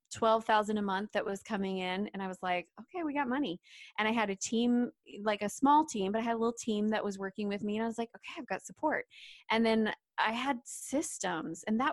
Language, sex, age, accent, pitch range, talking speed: English, female, 20-39, American, 195-245 Hz, 250 wpm